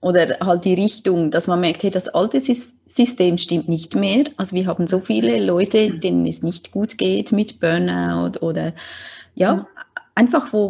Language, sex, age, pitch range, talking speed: German, female, 30-49, 170-215 Hz, 175 wpm